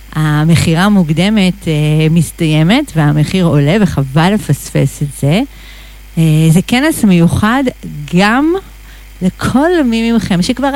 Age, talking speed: 50-69, 105 wpm